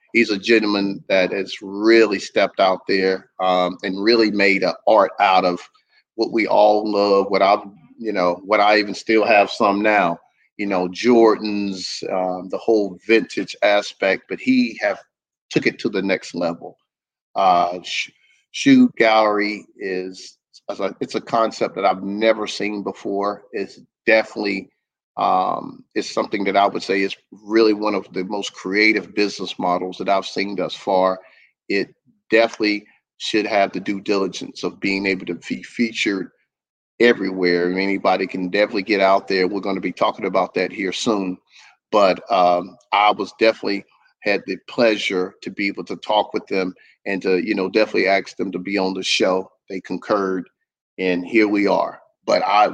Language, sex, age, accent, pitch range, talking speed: English, male, 40-59, American, 95-105 Hz, 170 wpm